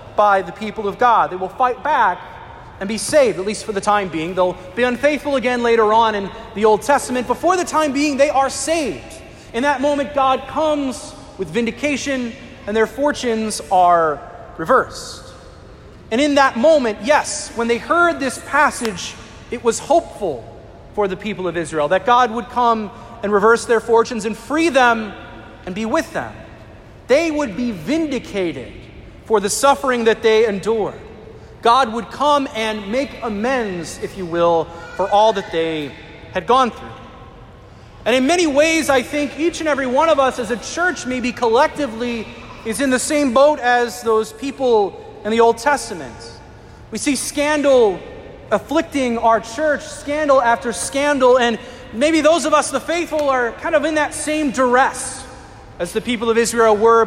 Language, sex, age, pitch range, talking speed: English, male, 30-49, 210-285 Hz, 170 wpm